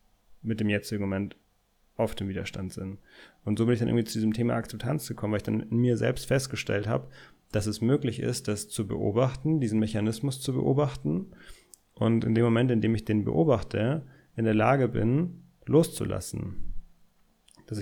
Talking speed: 180 wpm